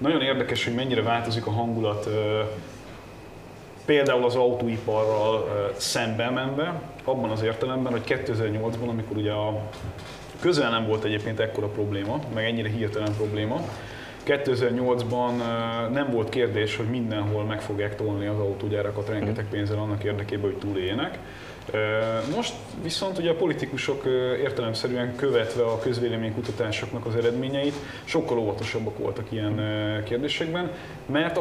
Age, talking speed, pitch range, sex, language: 30-49, 120 wpm, 110-125 Hz, male, English